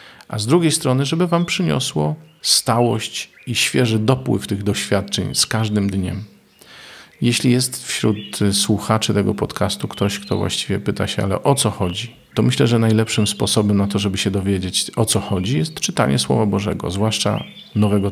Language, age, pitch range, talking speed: Polish, 40-59, 95-115 Hz, 165 wpm